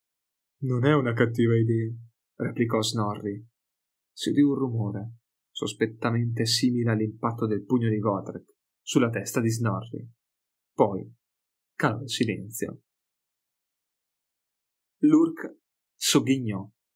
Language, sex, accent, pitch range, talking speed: Italian, male, native, 110-135 Hz, 100 wpm